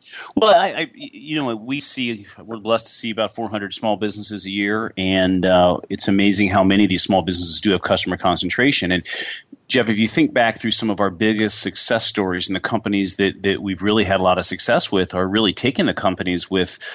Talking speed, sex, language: 235 wpm, male, English